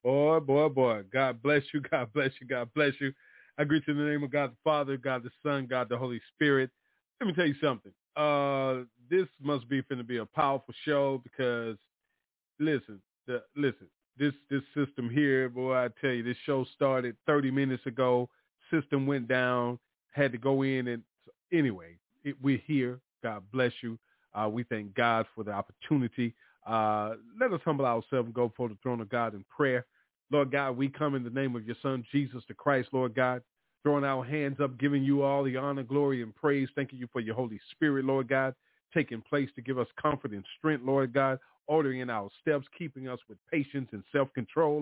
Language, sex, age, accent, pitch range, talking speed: English, male, 30-49, American, 125-150 Hz, 205 wpm